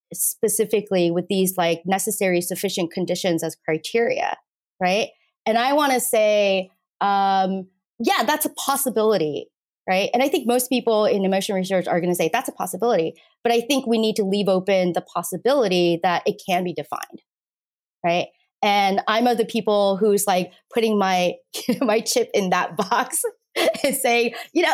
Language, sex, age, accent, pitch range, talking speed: English, female, 30-49, American, 180-245 Hz, 170 wpm